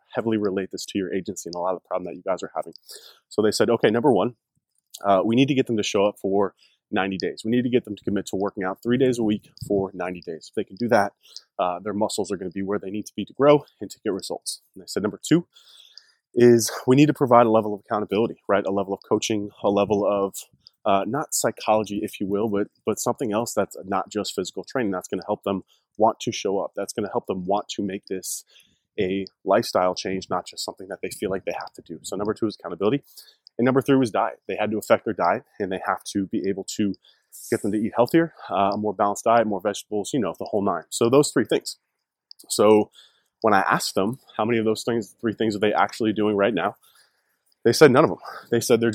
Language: English